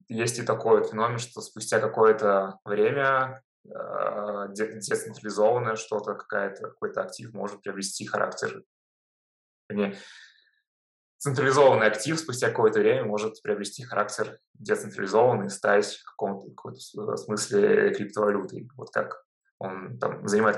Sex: male